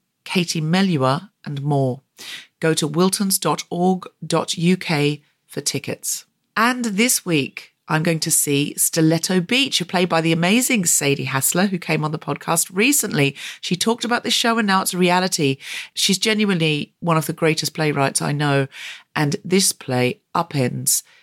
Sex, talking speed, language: female, 155 wpm, English